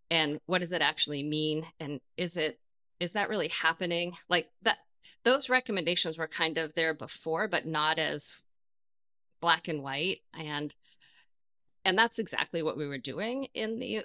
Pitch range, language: 145-170 Hz, English